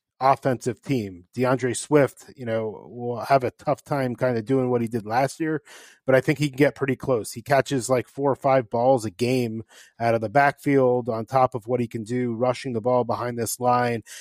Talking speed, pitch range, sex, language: 225 wpm, 125-145 Hz, male, English